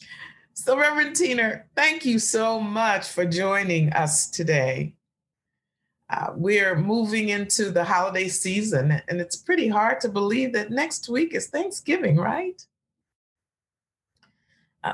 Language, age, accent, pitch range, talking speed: English, 40-59, American, 165-210 Hz, 125 wpm